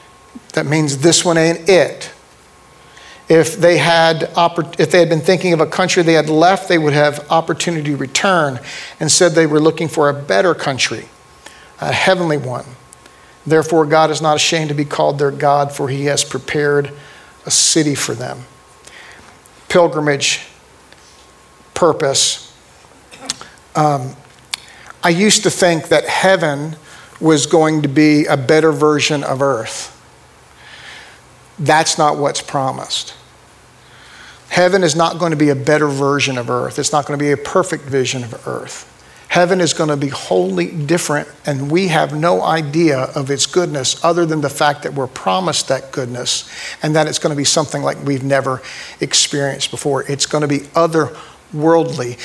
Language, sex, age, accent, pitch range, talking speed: English, male, 50-69, American, 140-165 Hz, 160 wpm